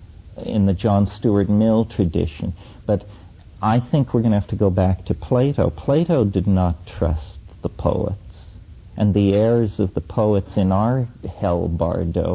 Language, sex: English, male